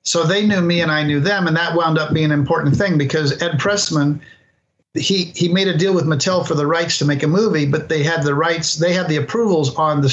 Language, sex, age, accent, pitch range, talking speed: English, male, 50-69, American, 140-165 Hz, 260 wpm